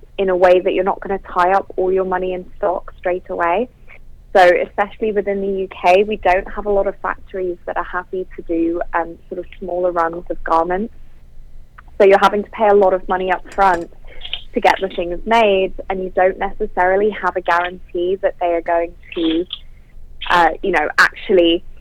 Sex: female